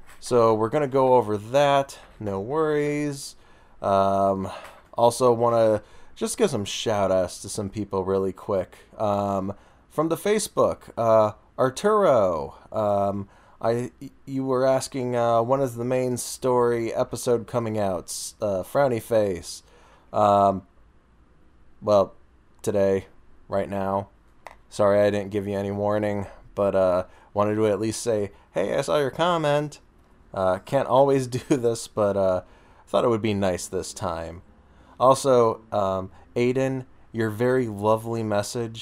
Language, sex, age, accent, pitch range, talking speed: English, male, 20-39, American, 95-125 Hz, 140 wpm